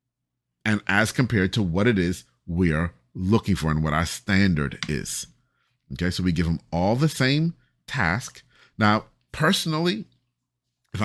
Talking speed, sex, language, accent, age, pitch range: 145 wpm, male, English, American, 30-49, 95-140 Hz